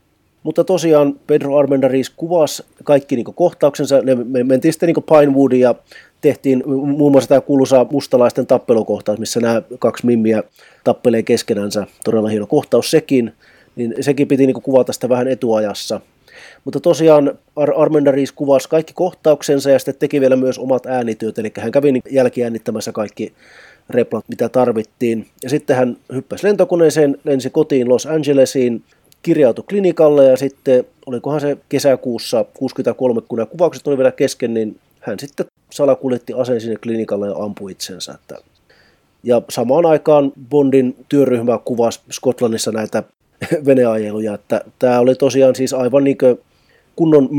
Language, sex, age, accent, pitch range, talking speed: Finnish, male, 30-49, native, 120-145 Hz, 140 wpm